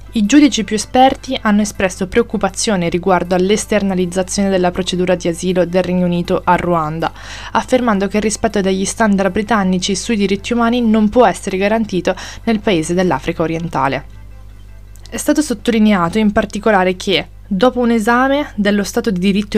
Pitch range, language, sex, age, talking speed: 185-235 Hz, Italian, female, 20-39, 150 wpm